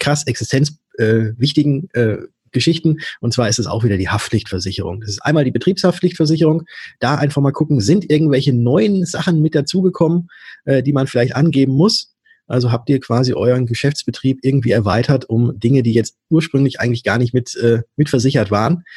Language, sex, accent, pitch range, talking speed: German, male, German, 115-145 Hz, 165 wpm